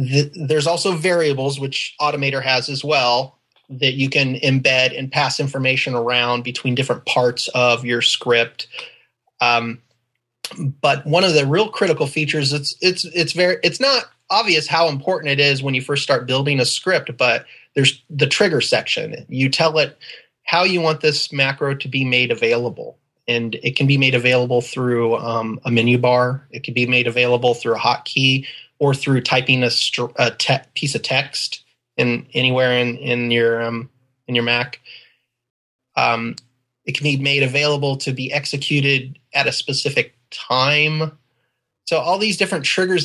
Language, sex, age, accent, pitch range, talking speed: English, male, 30-49, American, 125-155 Hz, 170 wpm